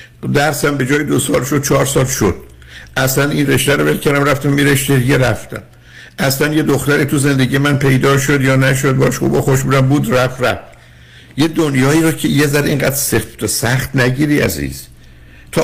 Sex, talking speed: male, 175 wpm